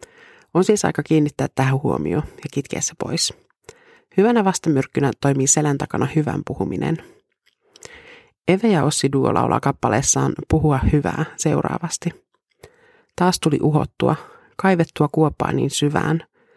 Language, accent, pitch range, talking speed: Finnish, native, 145-235 Hz, 115 wpm